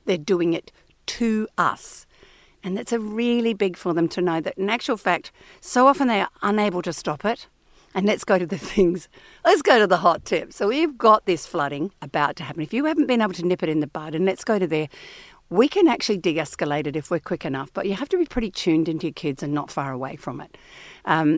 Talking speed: 245 wpm